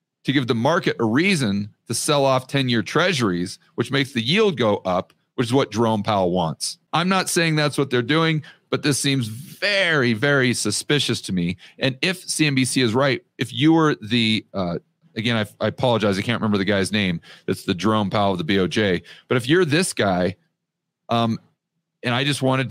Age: 40-59